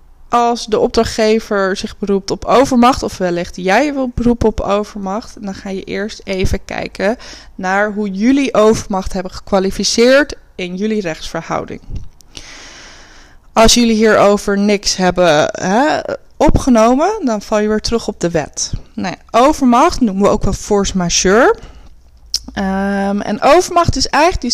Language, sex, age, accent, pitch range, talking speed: Dutch, female, 20-39, Dutch, 195-250 Hz, 130 wpm